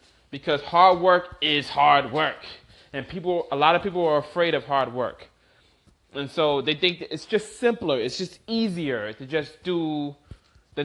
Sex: male